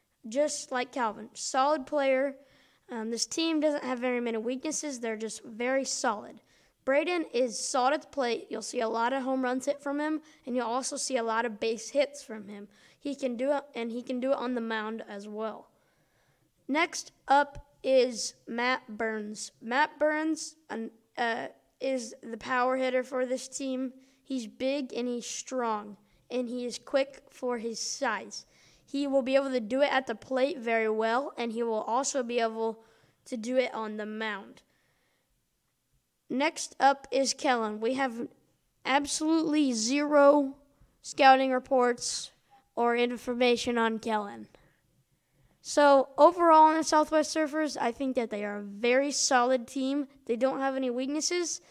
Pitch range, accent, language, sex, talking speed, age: 235-280 Hz, American, English, female, 165 wpm, 20-39